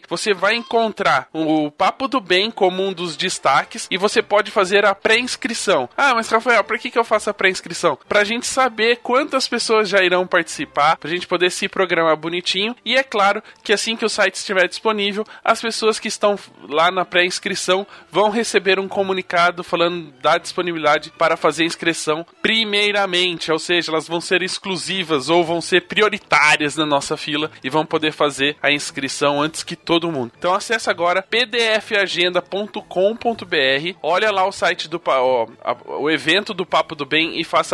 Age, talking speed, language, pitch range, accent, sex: 20-39, 175 wpm, Portuguese, 170-210 Hz, Brazilian, male